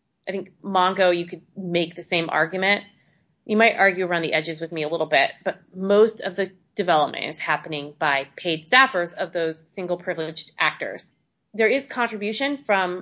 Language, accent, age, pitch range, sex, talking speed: English, American, 30-49, 170-210 Hz, female, 180 wpm